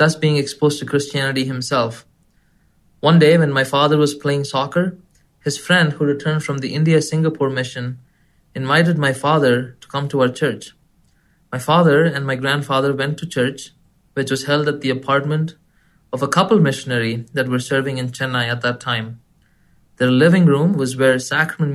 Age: 20-39